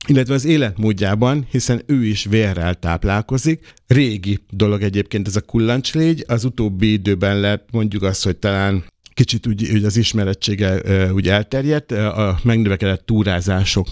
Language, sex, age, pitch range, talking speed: Hungarian, male, 50-69, 100-120 Hz, 135 wpm